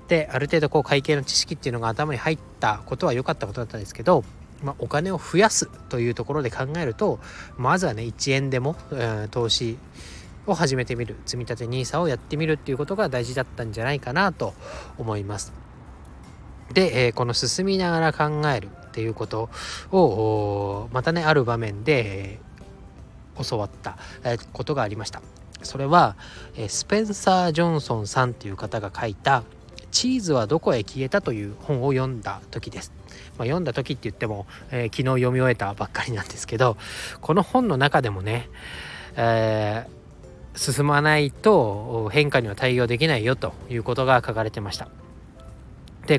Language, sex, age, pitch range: Japanese, male, 20-39, 105-150 Hz